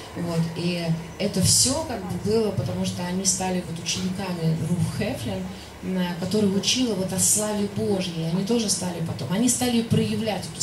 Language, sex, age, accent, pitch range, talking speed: Russian, female, 30-49, native, 160-185 Hz, 165 wpm